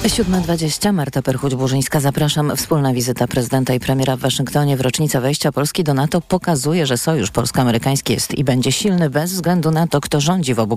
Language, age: Polish, 40-59